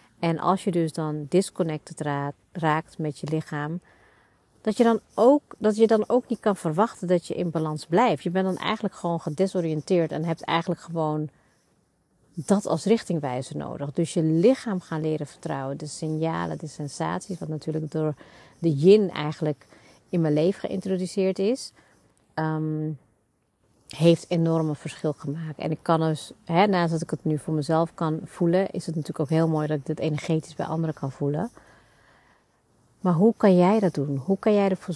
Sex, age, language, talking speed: female, 40-59, Dutch, 170 wpm